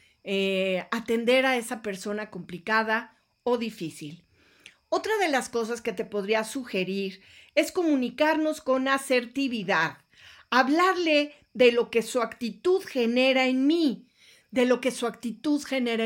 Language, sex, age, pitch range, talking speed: Spanish, female, 40-59, 200-270 Hz, 130 wpm